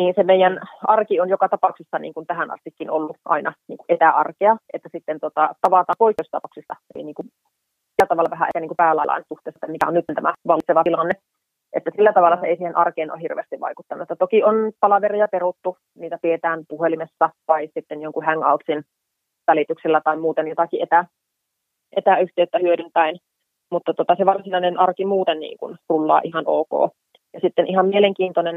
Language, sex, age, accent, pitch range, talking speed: Finnish, female, 30-49, native, 165-190 Hz, 160 wpm